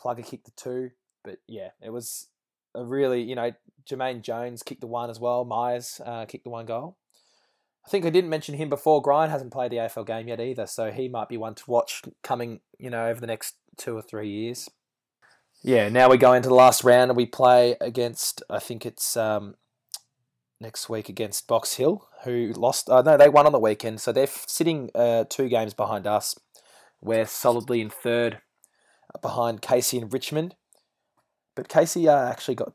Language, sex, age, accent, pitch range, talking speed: English, male, 20-39, Australian, 115-130 Hz, 200 wpm